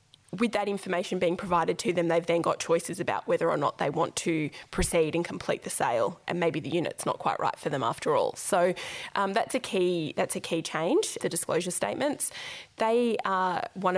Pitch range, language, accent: 175-205 Hz, English, Australian